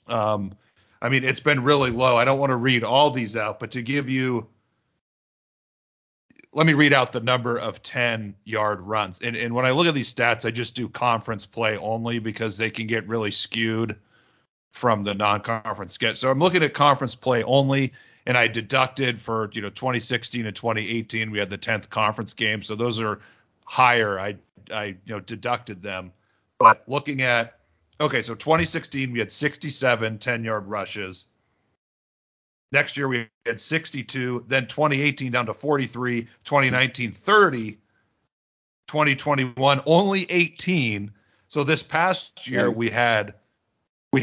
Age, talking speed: 40-59, 160 wpm